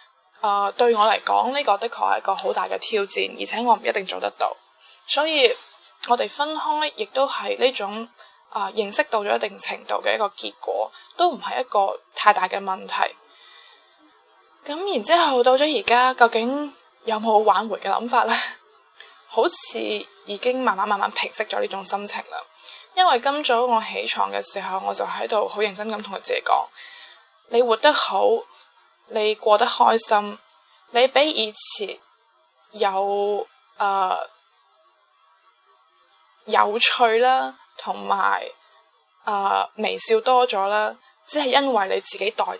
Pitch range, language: 205-305 Hz, Chinese